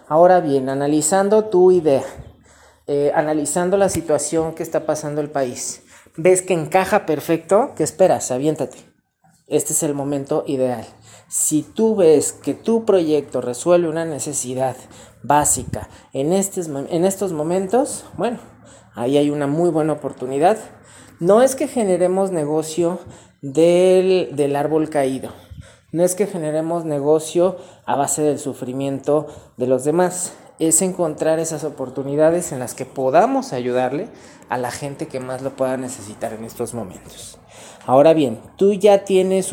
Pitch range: 135-175 Hz